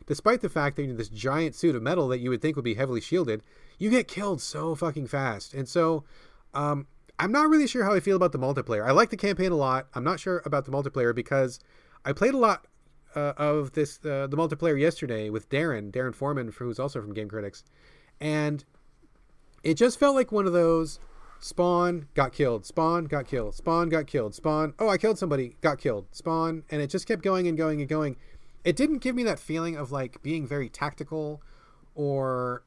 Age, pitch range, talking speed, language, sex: 30-49, 130-165 Hz, 215 wpm, English, male